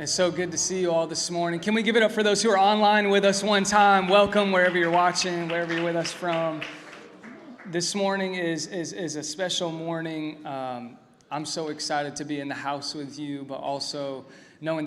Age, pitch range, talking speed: 20-39, 150-175 Hz, 220 wpm